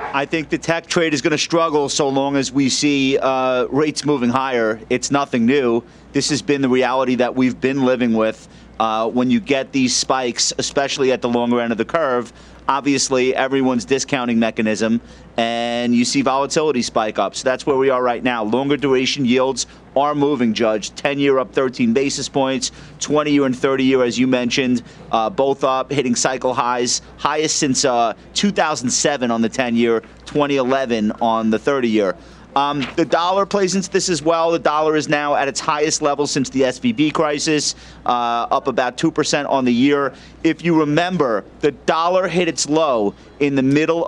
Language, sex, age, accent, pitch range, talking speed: English, male, 30-49, American, 125-150 Hz, 180 wpm